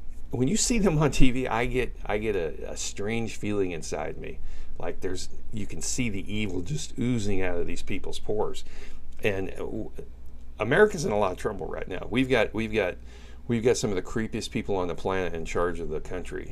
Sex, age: male, 40-59